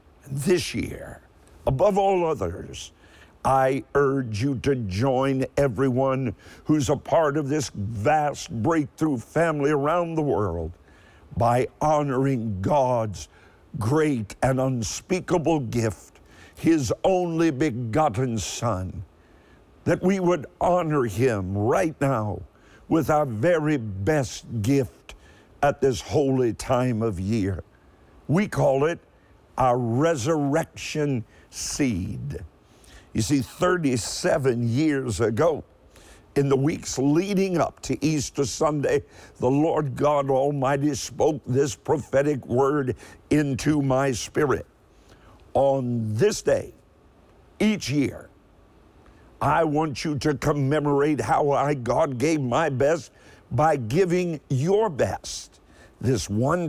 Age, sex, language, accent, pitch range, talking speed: 50-69, male, English, American, 110-150 Hz, 110 wpm